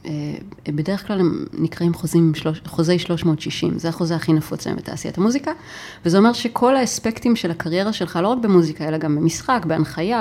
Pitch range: 160-215 Hz